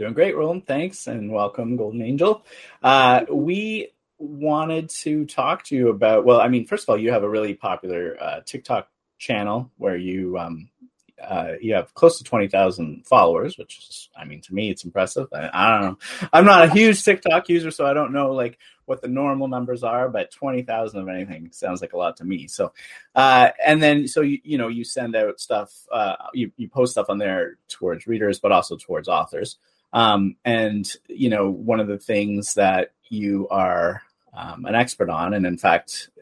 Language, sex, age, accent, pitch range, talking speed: English, male, 30-49, American, 100-140 Hz, 200 wpm